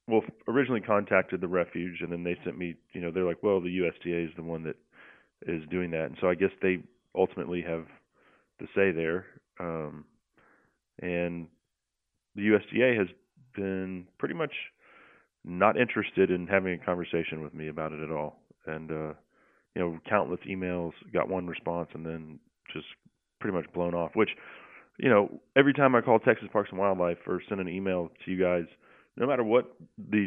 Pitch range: 85-100 Hz